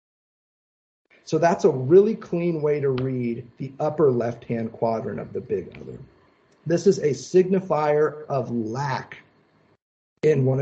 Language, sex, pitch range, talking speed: English, male, 125-170 Hz, 140 wpm